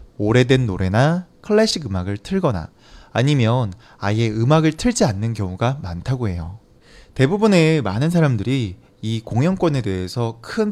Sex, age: male, 20-39